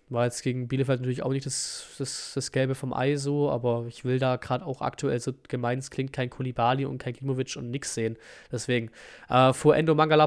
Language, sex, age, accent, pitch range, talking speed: German, male, 20-39, German, 120-140 Hz, 220 wpm